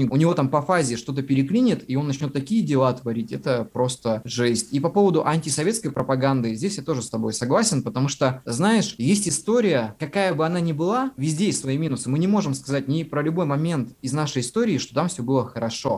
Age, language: 20-39, Russian